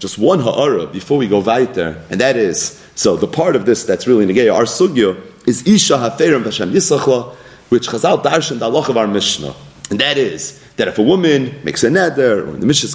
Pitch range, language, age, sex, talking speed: 110-160 Hz, English, 30-49, male, 220 wpm